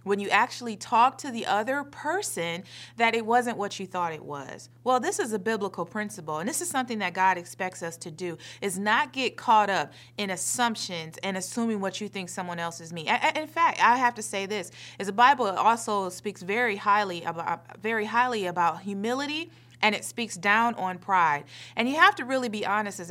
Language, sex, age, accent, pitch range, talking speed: English, female, 30-49, American, 175-230 Hz, 215 wpm